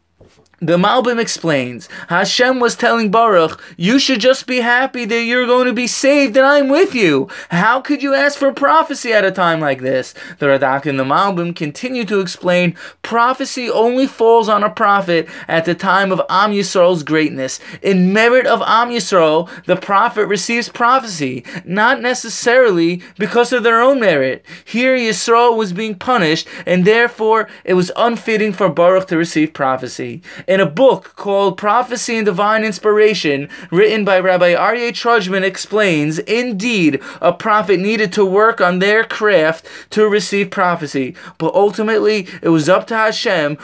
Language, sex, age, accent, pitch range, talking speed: English, male, 20-39, American, 175-230 Hz, 160 wpm